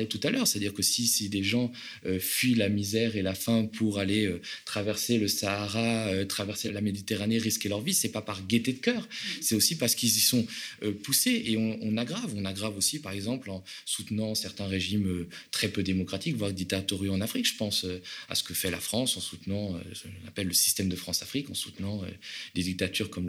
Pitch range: 90-110 Hz